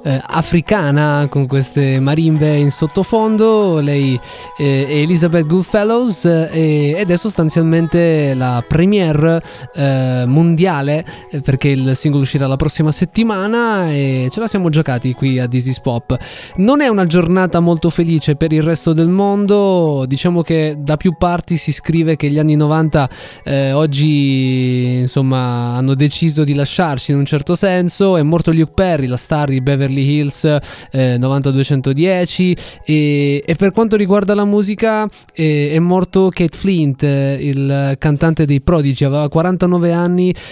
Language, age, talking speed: Italian, 20-39, 140 wpm